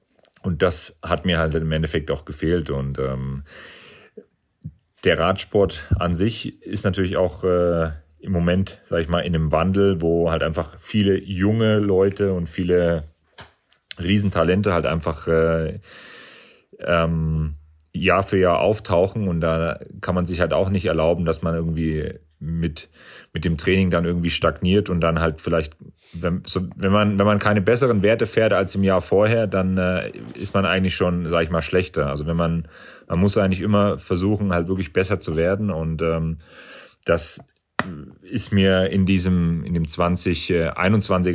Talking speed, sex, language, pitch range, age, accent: 165 wpm, male, German, 80-95 Hz, 40-59, German